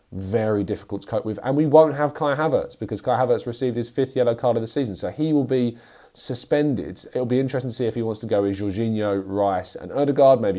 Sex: male